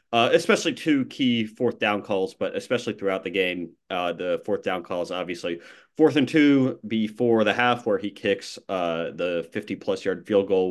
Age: 30-49